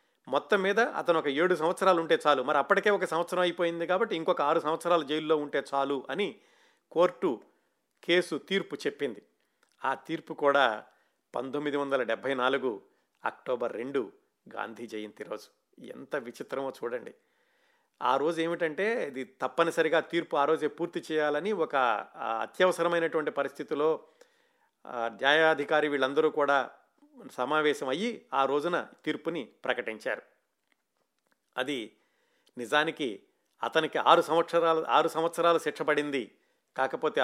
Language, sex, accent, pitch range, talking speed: Telugu, male, native, 140-180 Hz, 110 wpm